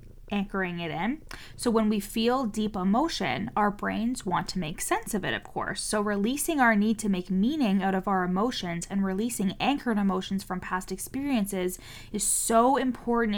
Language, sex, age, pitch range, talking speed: English, female, 20-39, 185-220 Hz, 180 wpm